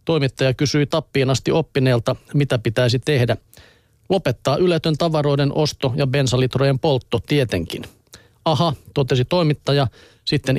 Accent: native